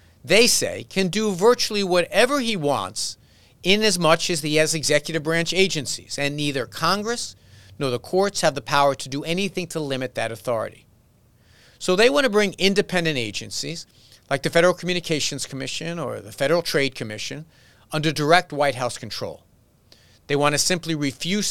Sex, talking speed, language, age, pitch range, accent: male, 165 wpm, English, 50-69, 125-180 Hz, American